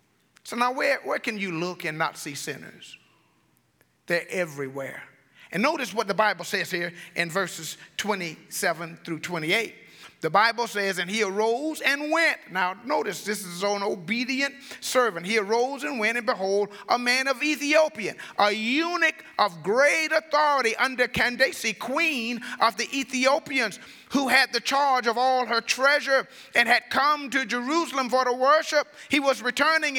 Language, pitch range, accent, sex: English, 200-270 Hz, American, male